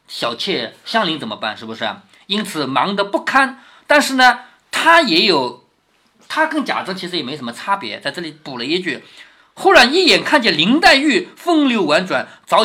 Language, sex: Chinese, male